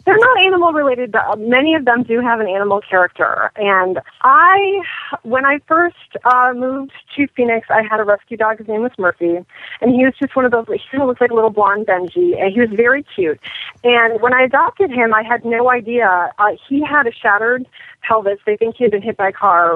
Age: 30-49